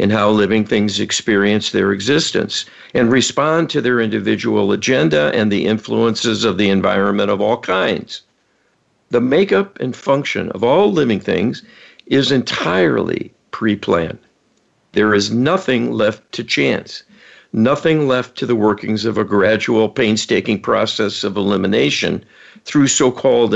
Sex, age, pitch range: male, 60-79, 100-125 Hz